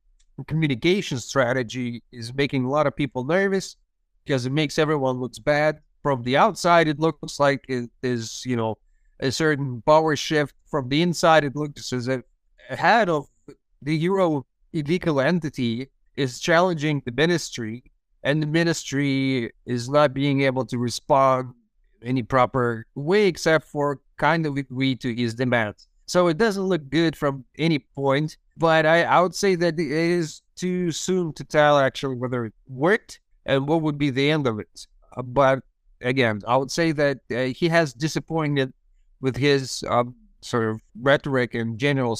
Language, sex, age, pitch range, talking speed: English, male, 30-49, 125-155 Hz, 170 wpm